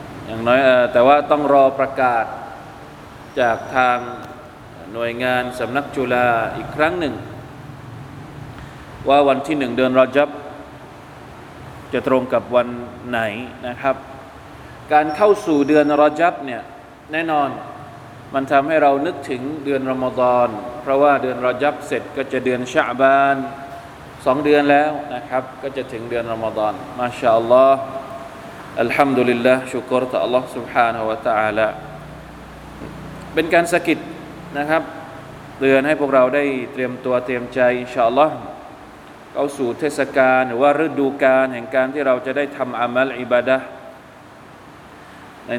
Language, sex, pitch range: Thai, male, 125-145 Hz